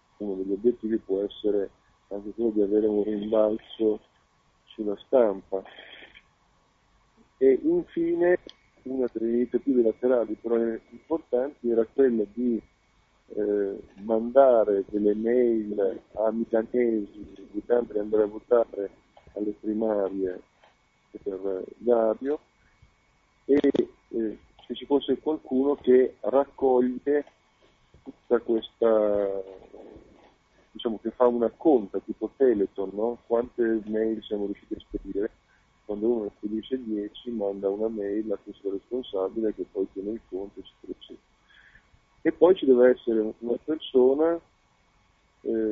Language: Italian